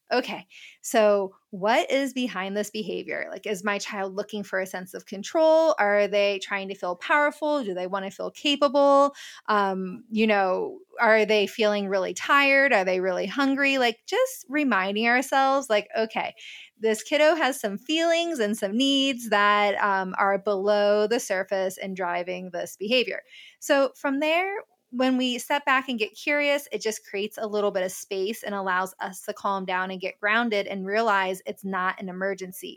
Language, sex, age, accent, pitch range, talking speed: English, female, 20-39, American, 200-270 Hz, 180 wpm